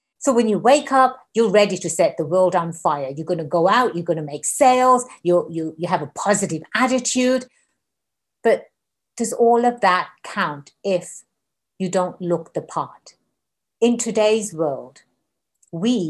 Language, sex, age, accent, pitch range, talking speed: English, female, 50-69, British, 180-255 Hz, 170 wpm